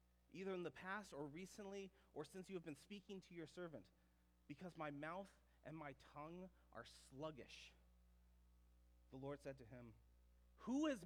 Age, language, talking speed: 30-49, English, 165 wpm